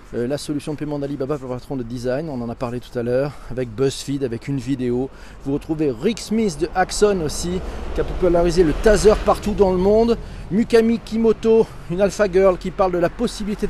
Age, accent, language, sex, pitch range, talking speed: 40-59, French, French, male, 145-200 Hz, 210 wpm